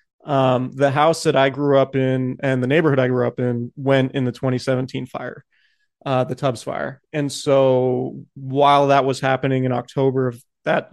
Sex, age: male, 30-49